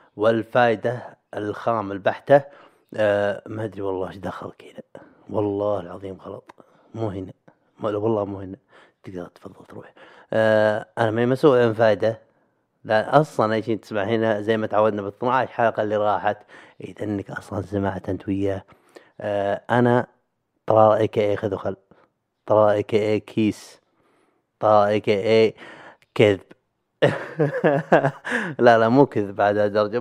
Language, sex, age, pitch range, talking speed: Arabic, male, 30-49, 105-130 Hz, 130 wpm